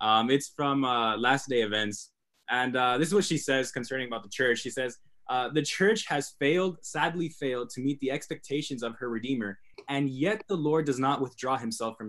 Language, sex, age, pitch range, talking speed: English, male, 20-39, 115-155 Hz, 215 wpm